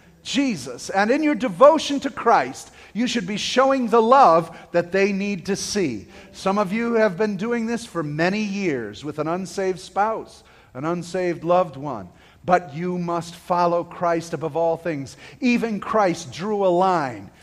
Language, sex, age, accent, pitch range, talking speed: English, male, 50-69, American, 160-210 Hz, 170 wpm